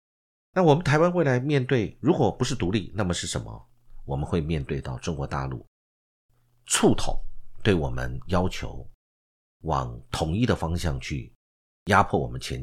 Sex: male